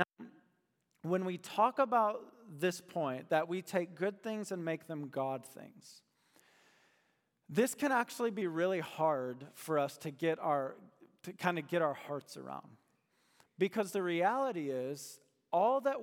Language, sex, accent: English, male, American